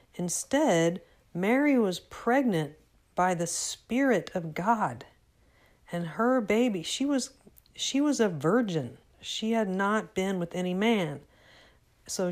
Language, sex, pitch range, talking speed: English, female, 160-210 Hz, 125 wpm